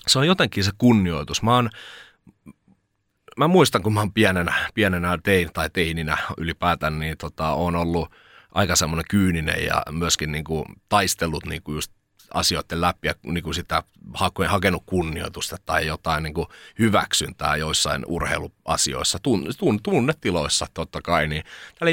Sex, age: male, 30-49